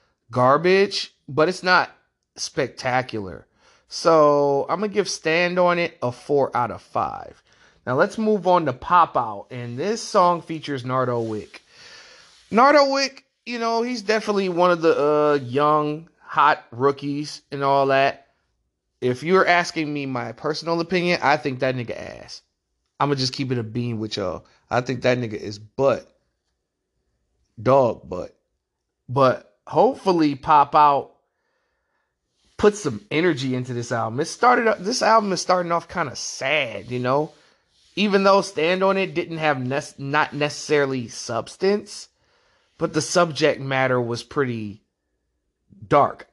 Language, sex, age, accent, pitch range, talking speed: English, male, 30-49, American, 125-180 Hz, 150 wpm